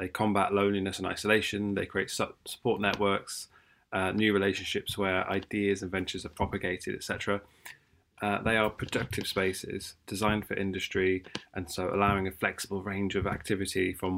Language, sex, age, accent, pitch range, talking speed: English, male, 20-39, British, 95-105 Hz, 150 wpm